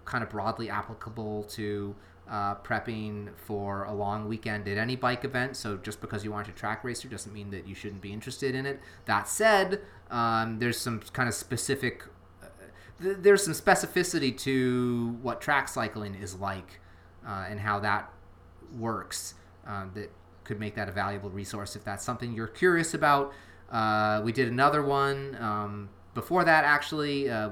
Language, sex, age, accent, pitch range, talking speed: English, male, 30-49, American, 100-125 Hz, 175 wpm